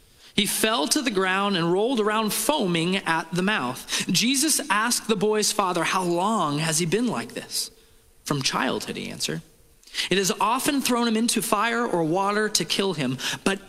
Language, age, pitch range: English, 30-49, 170-220 Hz